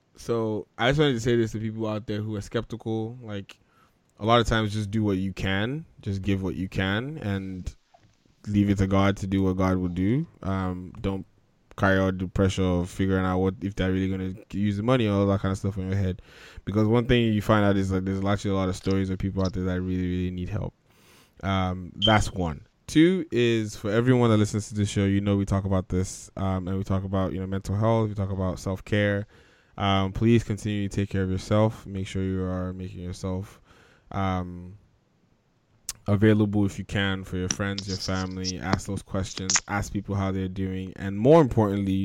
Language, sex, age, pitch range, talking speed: English, male, 20-39, 95-110 Hz, 225 wpm